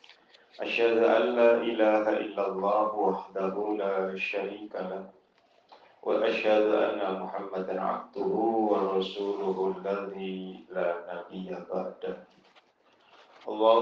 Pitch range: 95-105 Hz